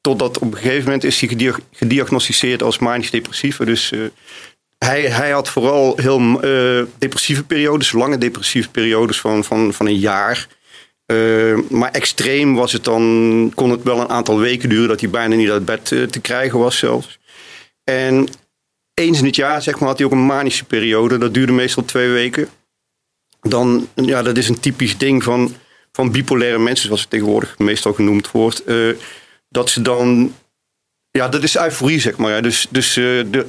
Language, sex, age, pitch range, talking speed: Dutch, male, 40-59, 115-130 Hz, 180 wpm